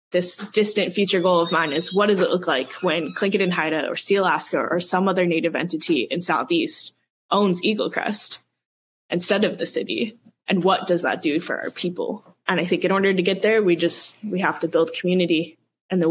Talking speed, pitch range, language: 210 wpm, 165-205 Hz, English